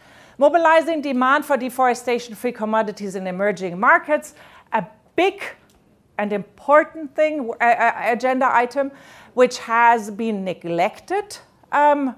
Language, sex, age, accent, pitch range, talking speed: English, female, 40-59, German, 205-270 Hz, 110 wpm